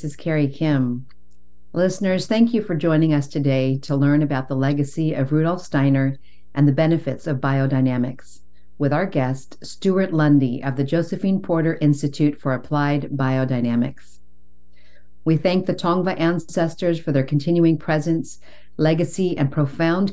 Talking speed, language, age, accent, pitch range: 145 wpm, English, 50-69, American, 135-165 Hz